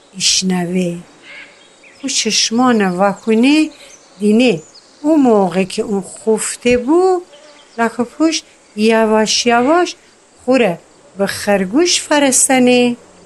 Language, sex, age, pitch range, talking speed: Persian, female, 60-79, 195-290 Hz, 90 wpm